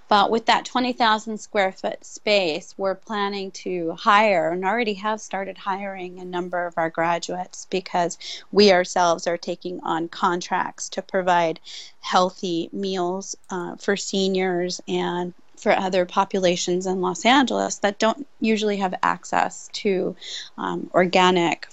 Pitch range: 180-210 Hz